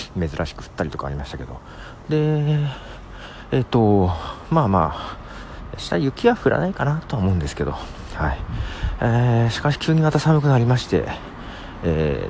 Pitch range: 80-125 Hz